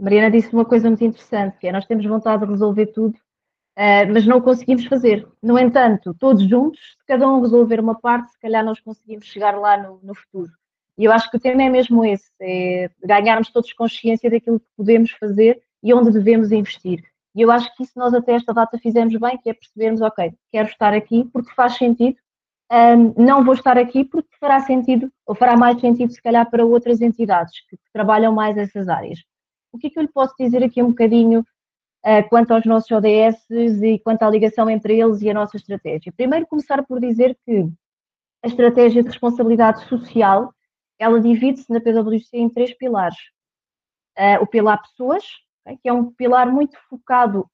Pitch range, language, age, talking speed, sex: 215-245 Hz, Portuguese, 20-39, 190 wpm, female